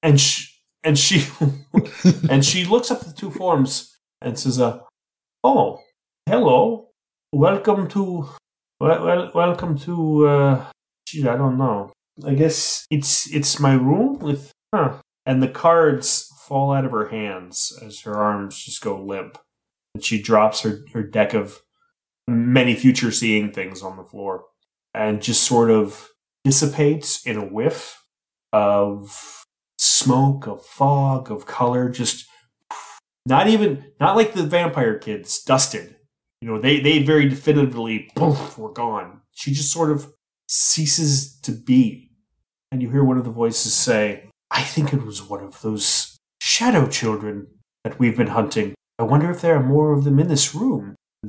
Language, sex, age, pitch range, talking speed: English, male, 30-49, 110-150 Hz, 160 wpm